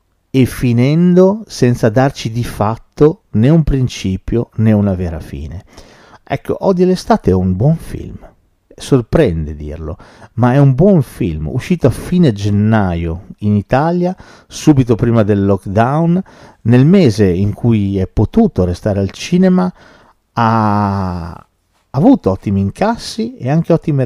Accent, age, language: native, 50-69, Italian